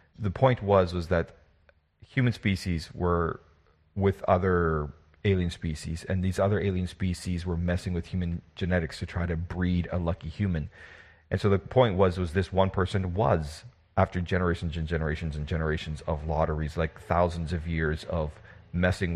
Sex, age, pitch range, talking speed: male, 40-59, 85-105 Hz, 165 wpm